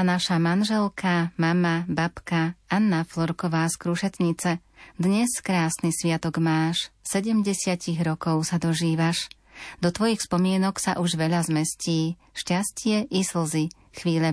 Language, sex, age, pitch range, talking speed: Slovak, female, 30-49, 160-180 Hz, 115 wpm